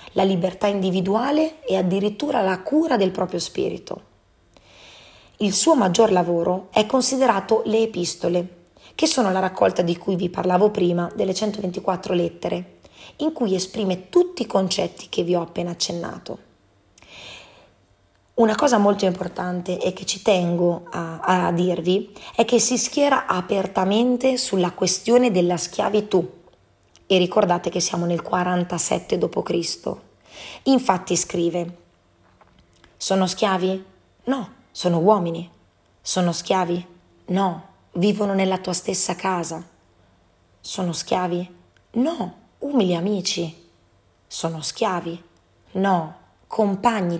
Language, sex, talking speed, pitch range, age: Italian, female, 115 wpm, 170-205 Hz, 30-49